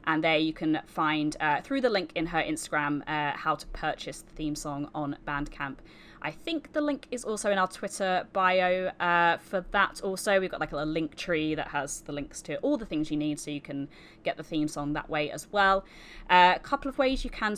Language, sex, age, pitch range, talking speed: English, female, 20-39, 155-200 Hz, 235 wpm